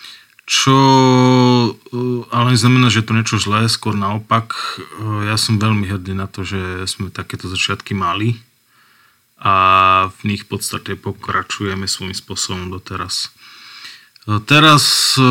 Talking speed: 120 wpm